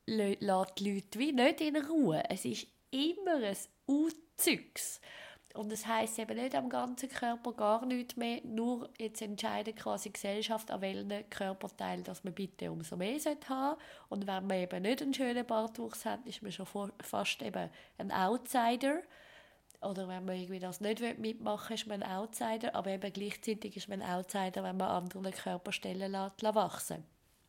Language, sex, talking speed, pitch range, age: German, female, 170 wpm, 190-245 Hz, 20-39